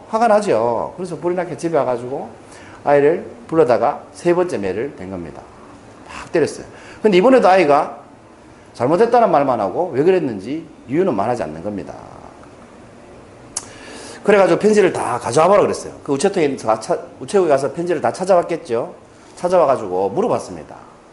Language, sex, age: Korean, male, 40-59